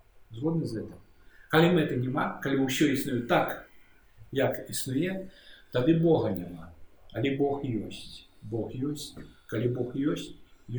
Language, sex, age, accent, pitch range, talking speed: Russian, male, 50-69, native, 110-140 Hz, 120 wpm